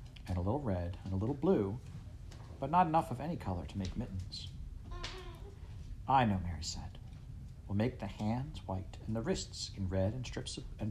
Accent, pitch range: American, 95-120 Hz